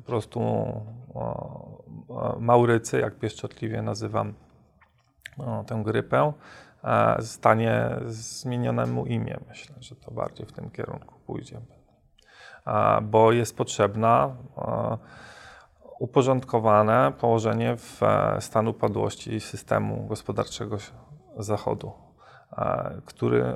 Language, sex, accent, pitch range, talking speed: Polish, male, native, 110-130 Hz, 95 wpm